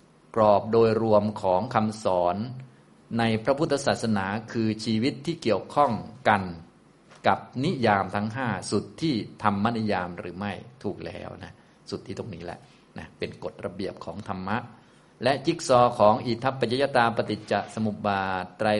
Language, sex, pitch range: Thai, male, 100-115 Hz